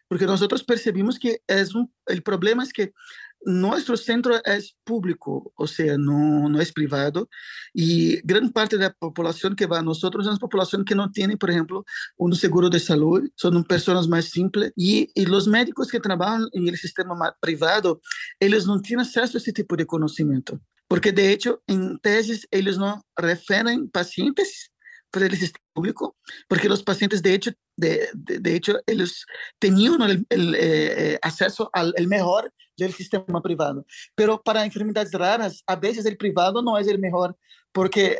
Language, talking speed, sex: Spanish, 175 wpm, male